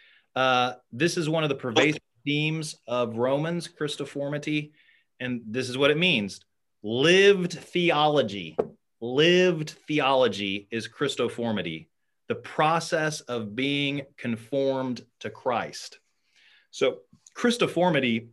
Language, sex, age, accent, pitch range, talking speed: English, male, 30-49, American, 105-140 Hz, 105 wpm